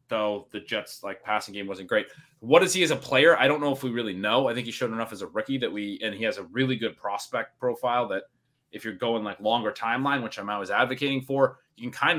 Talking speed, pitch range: 265 wpm, 110-130 Hz